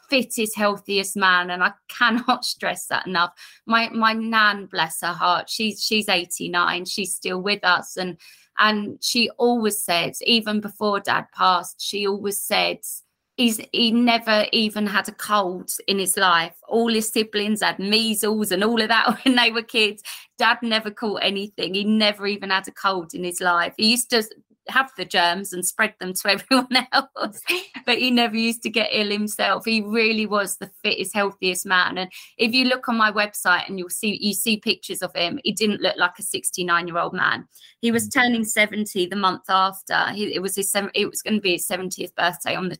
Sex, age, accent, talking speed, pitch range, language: female, 20-39, British, 200 wpm, 185-220 Hz, English